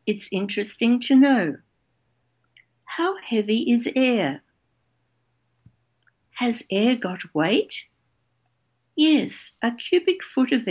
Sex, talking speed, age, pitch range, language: female, 95 wpm, 60-79, 165-240 Hz, Ukrainian